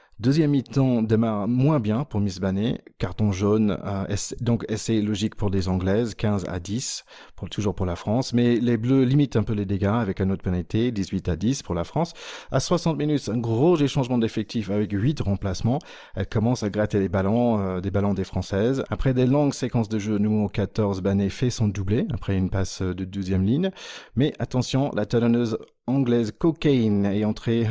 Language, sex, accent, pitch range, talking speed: French, male, French, 100-125 Hz, 195 wpm